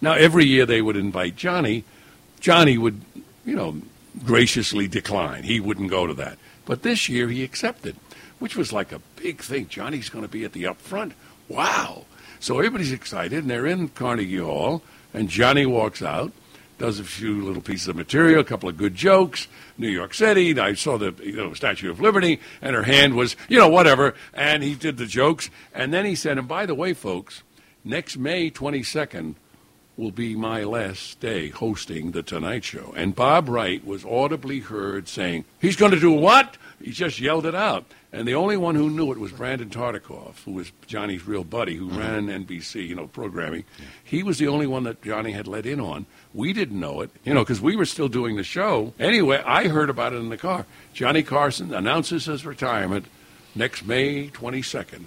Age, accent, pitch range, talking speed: 60-79, American, 105-155 Hz, 200 wpm